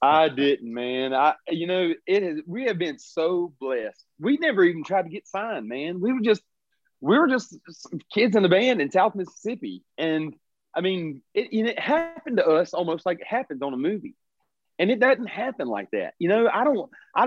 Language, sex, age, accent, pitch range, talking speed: English, male, 40-59, American, 145-230 Hz, 215 wpm